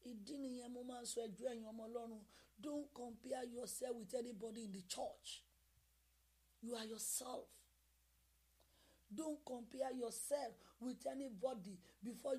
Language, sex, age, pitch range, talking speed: English, female, 40-59, 225-305 Hz, 110 wpm